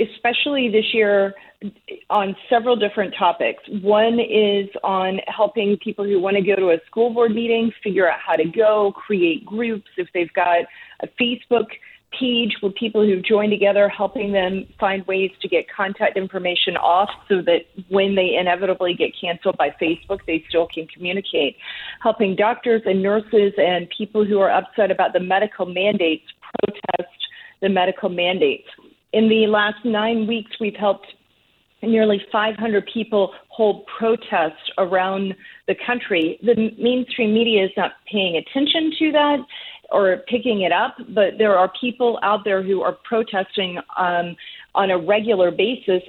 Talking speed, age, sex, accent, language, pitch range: 160 wpm, 40-59, female, American, English, 190-230 Hz